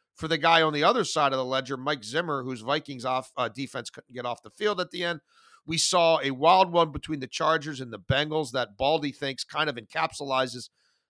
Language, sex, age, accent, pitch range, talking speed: English, male, 40-59, American, 140-185 Hz, 225 wpm